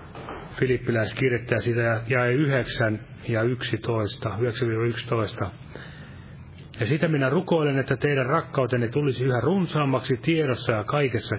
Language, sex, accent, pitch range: Finnish, male, native, 115-135 Hz